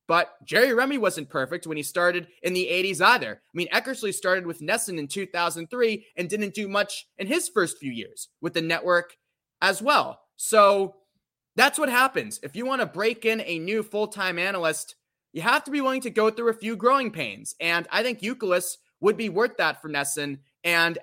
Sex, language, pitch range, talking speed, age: male, English, 140-200 Hz, 205 wpm, 20-39